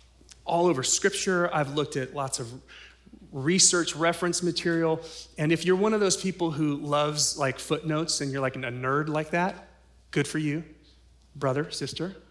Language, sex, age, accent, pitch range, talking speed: English, male, 30-49, American, 125-165 Hz, 165 wpm